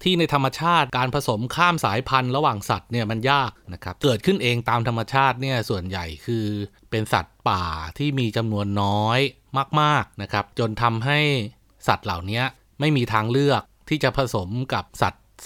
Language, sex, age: Thai, male, 30-49